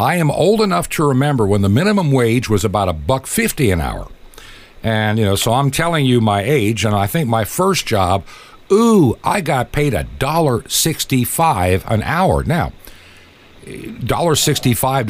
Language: English